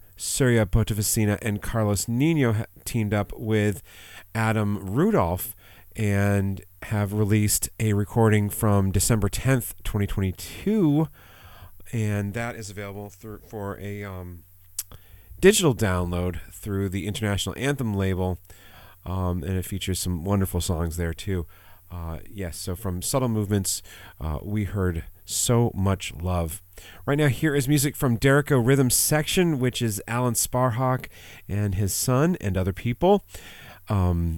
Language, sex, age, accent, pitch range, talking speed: English, male, 30-49, American, 95-115 Hz, 130 wpm